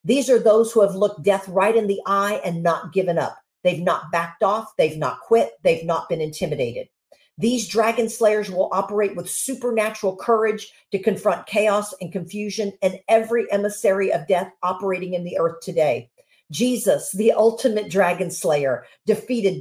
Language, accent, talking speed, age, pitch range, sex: English, American, 170 wpm, 50-69, 185-230 Hz, female